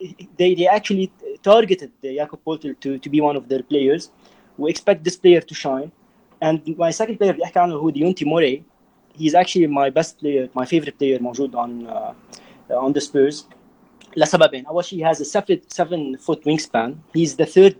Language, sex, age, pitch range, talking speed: Arabic, male, 30-49, 140-175 Hz, 170 wpm